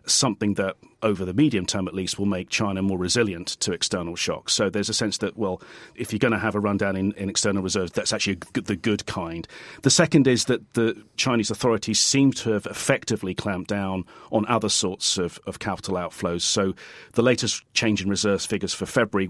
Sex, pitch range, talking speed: male, 95-110 Hz, 210 wpm